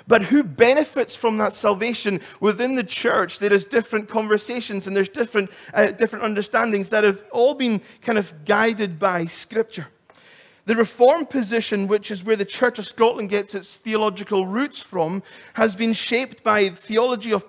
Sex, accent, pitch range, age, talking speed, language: male, British, 195-235 Hz, 30-49, 170 wpm, English